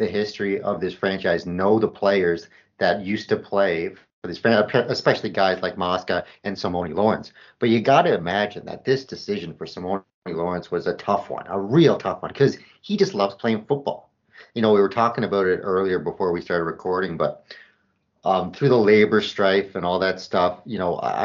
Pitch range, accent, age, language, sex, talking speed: 90-110 Hz, American, 30-49, English, male, 200 wpm